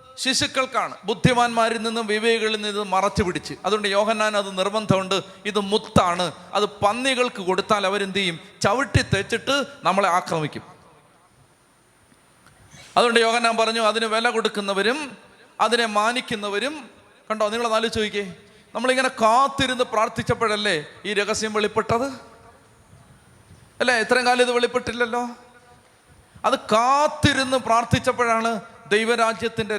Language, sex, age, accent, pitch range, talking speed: Malayalam, male, 30-49, native, 210-250 Hz, 100 wpm